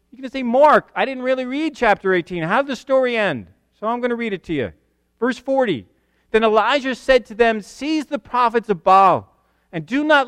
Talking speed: 230 wpm